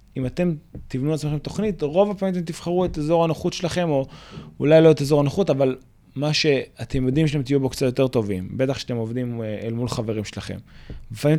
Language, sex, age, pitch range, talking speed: Hebrew, male, 20-39, 110-135 Hz, 195 wpm